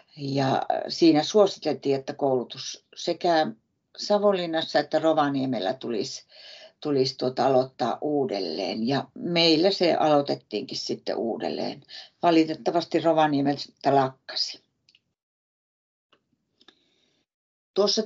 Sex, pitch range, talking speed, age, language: female, 145-185 Hz, 80 wpm, 60-79, Finnish